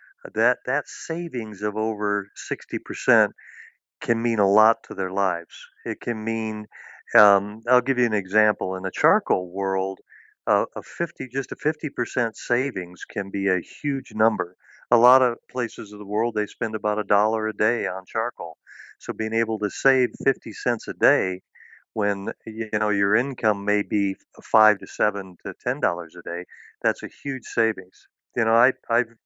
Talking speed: 180 wpm